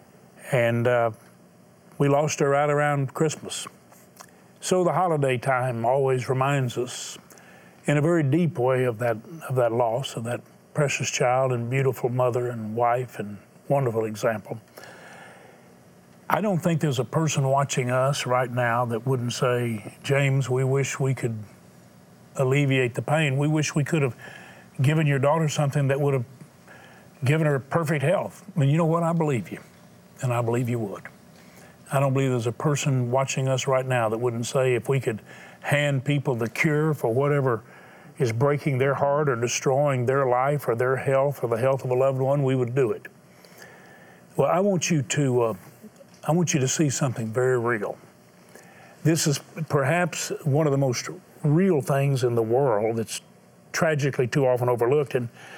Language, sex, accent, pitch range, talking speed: English, male, American, 125-150 Hz, 175 wpm